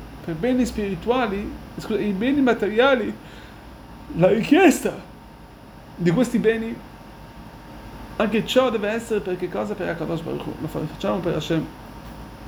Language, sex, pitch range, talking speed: Italian, male, 195-240 Hz, 115 wpm